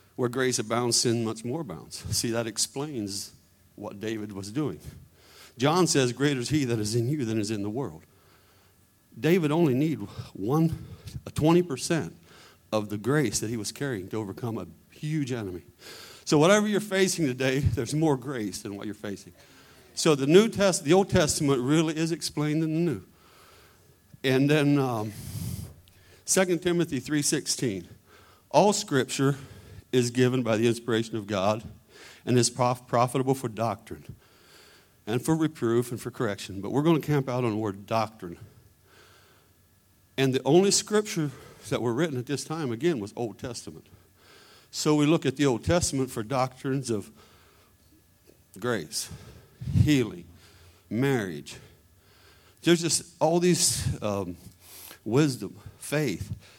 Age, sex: 50-69, male